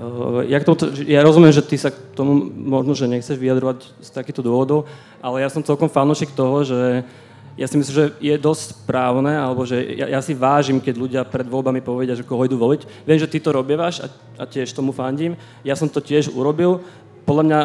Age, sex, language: 20-39, male, Slovak